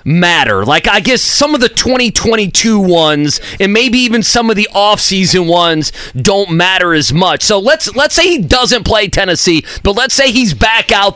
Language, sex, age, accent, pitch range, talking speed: English, male, 30-49, American, 180-235 Hz, 190 wpm